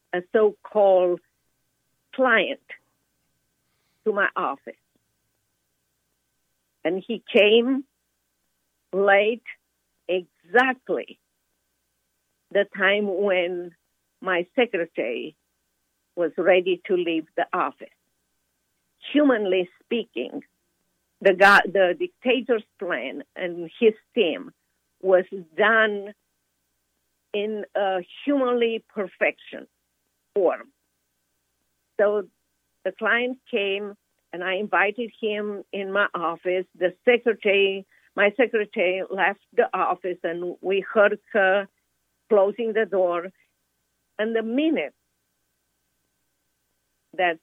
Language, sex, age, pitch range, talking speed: English, female, 50-69, 175-215 Hz, 85 wpm